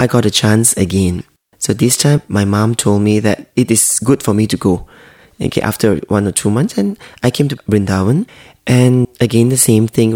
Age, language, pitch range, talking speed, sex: 20-39, English, 105-130 Hz, 215 wpm, male